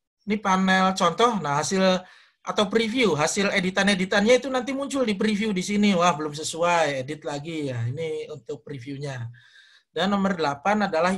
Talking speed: 160 wpm